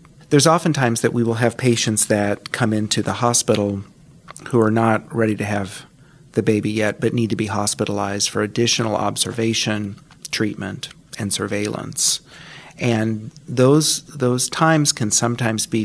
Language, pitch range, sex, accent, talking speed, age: English, 110-130 Hz, male, American, 150 wpm, 40-59